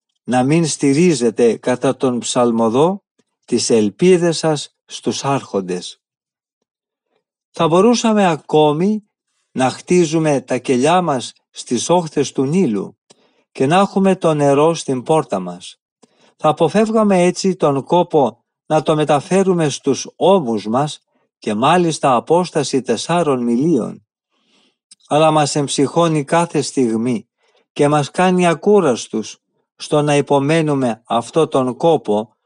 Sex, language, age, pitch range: male, Greek, 50-69, 130-175 Hz